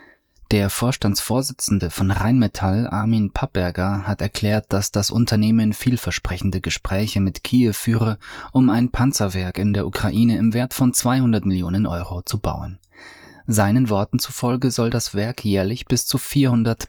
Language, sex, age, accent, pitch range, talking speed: German, male, 20-39, German, 95-115 Hz, 140 wpm